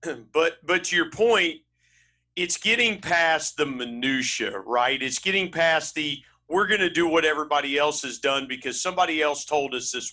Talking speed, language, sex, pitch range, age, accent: 180 wpm, English, male, 125-180 Hz, 50-69, American